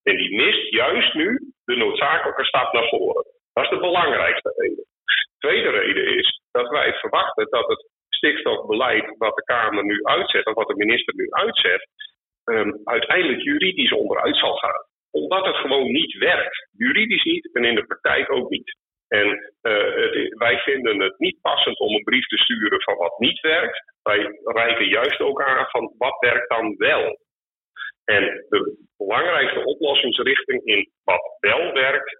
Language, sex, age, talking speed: Dutch, male, 50-69, 170 wpm